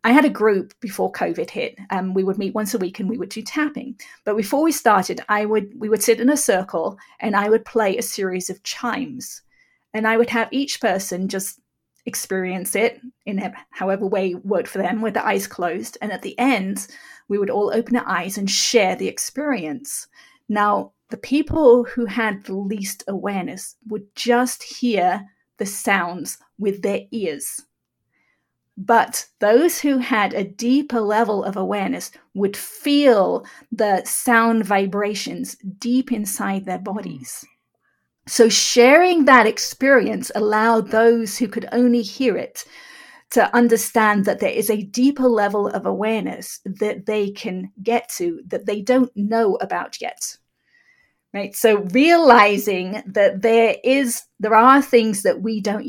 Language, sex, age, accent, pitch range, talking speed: English, female, 40-59, British, 200-250 Hz, 160 wpm